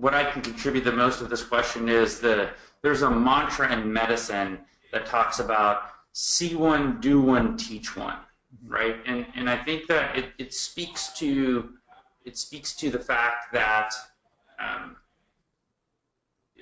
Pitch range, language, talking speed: 115-140 Hz, English, 150 wpm